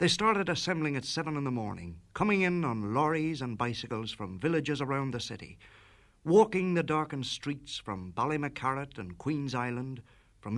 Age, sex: 60-79, male